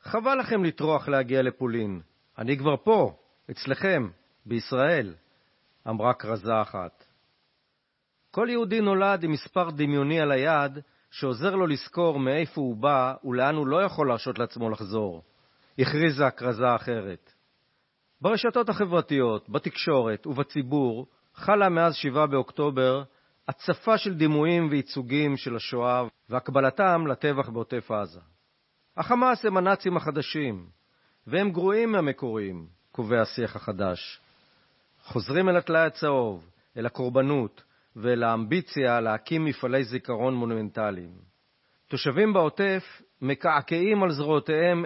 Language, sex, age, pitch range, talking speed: Hebrew, male, 50-69, 120-165 Hz, 110 wpm